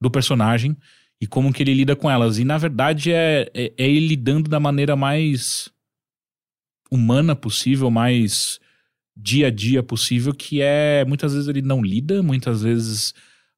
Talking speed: 155 wpm